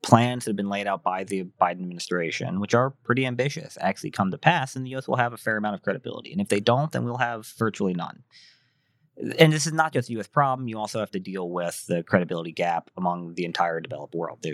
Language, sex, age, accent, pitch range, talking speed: English, male, 30-49, American, 90-120 Hz, 245 wpm